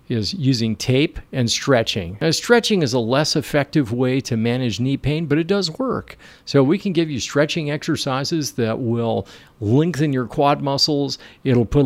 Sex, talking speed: male, 175 wpm